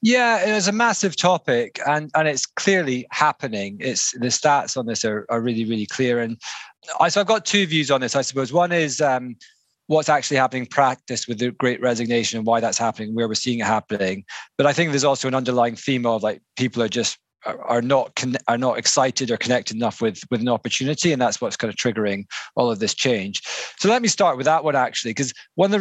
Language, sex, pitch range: English, male, 120-155 Hz